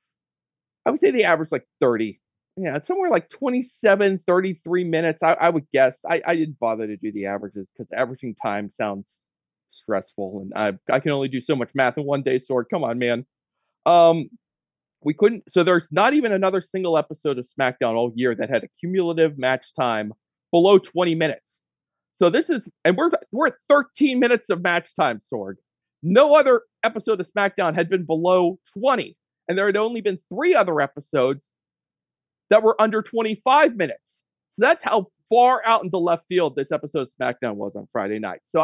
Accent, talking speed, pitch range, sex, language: American, 190 wpm, 145-235 Hz, male, English